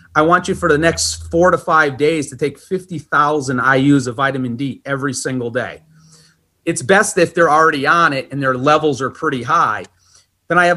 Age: 30-49